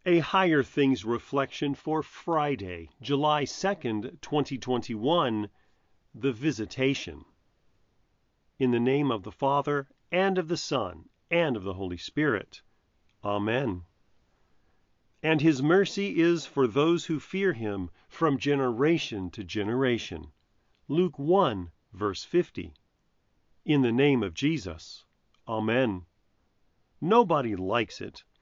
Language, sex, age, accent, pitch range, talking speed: English, male, 40-59, American, 110-150 Hz, 110 wpm